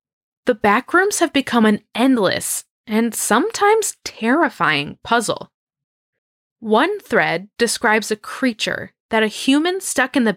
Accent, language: American, English